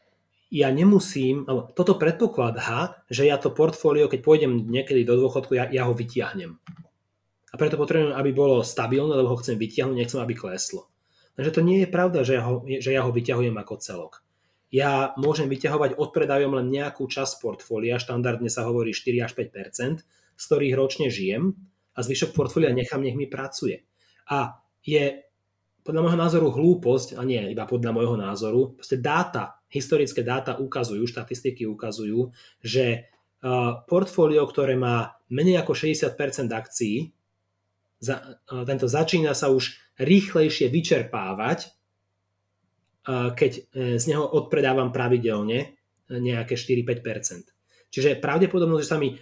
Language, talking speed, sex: Slovak, 140 wpm, male